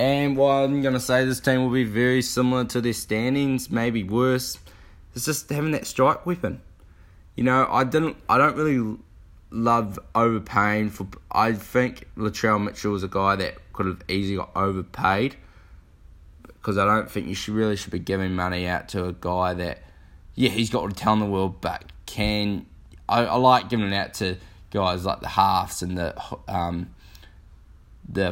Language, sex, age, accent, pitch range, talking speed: English, male, 20-39, Australian, 90-115 Hz, 180 wpm